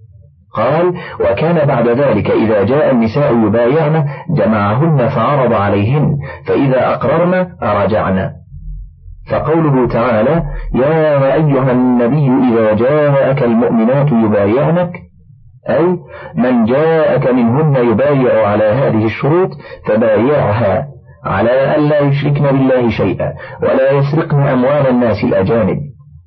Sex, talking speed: male, 95 wpm